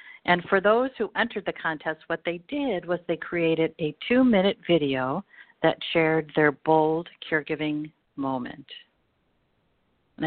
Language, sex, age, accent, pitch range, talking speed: English, female, 50-69, American, 155-195 Hz, 135 wpm